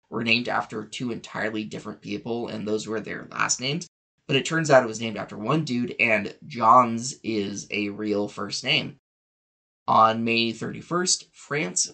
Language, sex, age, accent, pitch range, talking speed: English, male, 20-39, American, 105-135 Hz, 170 wpm